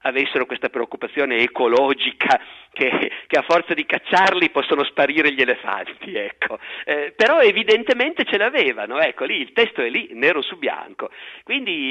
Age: 50-69